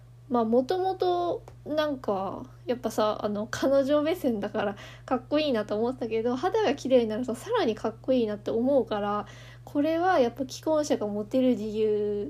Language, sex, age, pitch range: Japanese, female, 20-39, 200-265 Hz